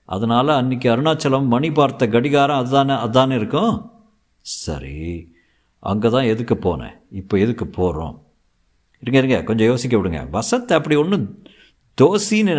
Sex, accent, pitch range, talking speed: male, native, 90-130 Hz, 125 wpm